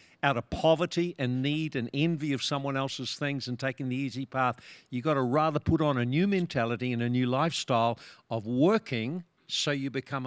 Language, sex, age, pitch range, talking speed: English, male, 50-69, 125-160 Hz, 200 wpm